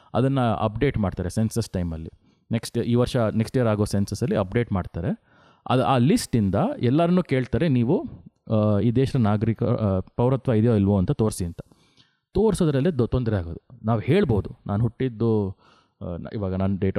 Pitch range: 105-135 Hz